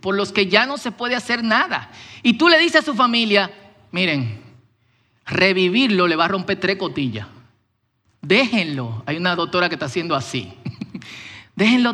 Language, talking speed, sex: Spanish, 170 wpm, male